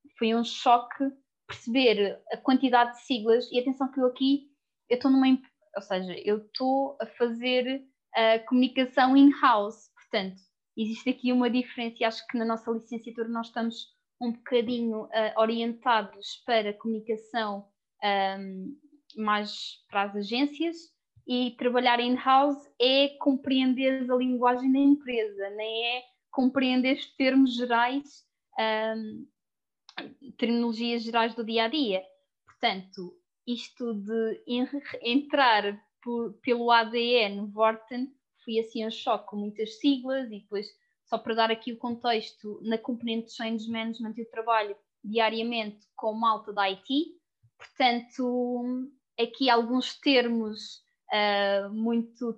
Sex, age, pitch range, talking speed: female, 20-39, 225-265 Hz, 125 wpm